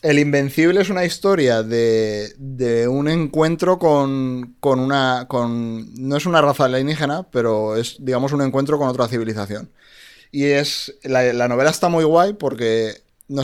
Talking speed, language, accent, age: 155 wpm, Spanish, Spanish, 20-39